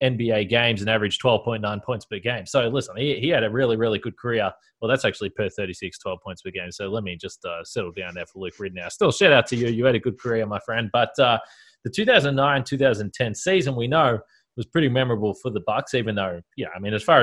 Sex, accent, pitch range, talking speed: male, Australian, 115-140 Hz, 245 wpm